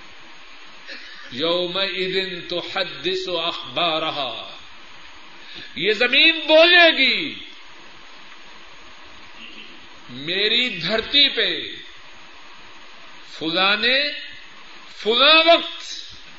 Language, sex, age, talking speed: Urdu, male, 50-69, 65 wpm